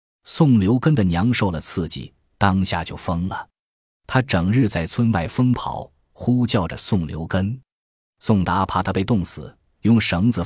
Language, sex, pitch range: Chinese, male, 85-115 Hz